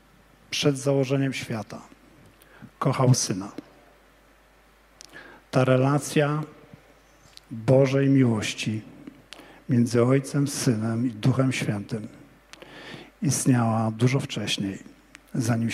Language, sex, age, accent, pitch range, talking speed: Polish, male, 50-69, native, 120-140 Hz, 70 wpm